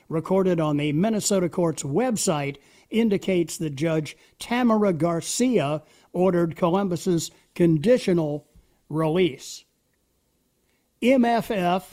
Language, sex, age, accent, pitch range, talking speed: English, male, 60-79, American, 160-200 Hz, 80 wpm